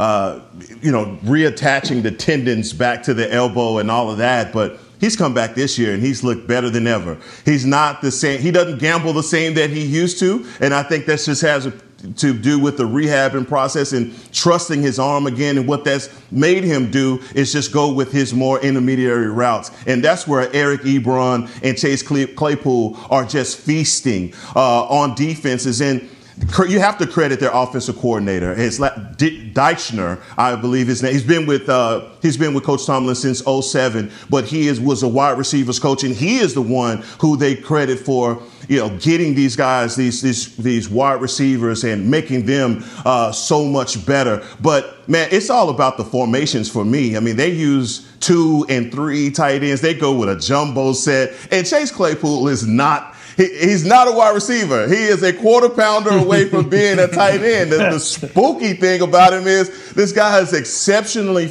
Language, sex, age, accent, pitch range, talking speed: English, male, 40-59, American, 125-160 Hz, 195 wpm